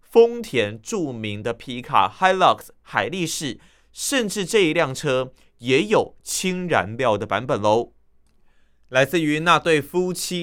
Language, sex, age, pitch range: Chinese, male, 30-49, 110-170 Hz